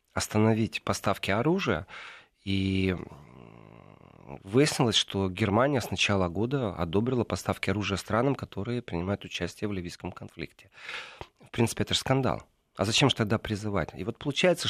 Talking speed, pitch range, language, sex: 135 wpm, 100-135 Hz, Russian, male